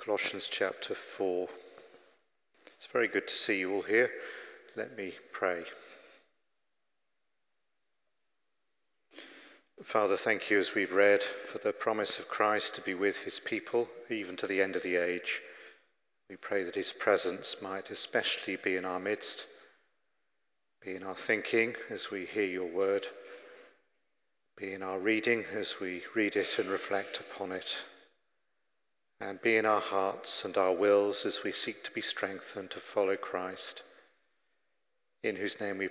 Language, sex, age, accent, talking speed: English, male, 50-69, British, 150 wpm